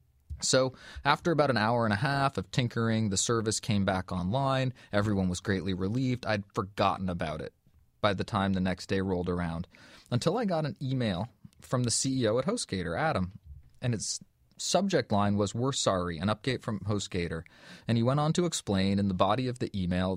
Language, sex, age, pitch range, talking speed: English, male, 20-39, 95-125 Hz, 195 wpm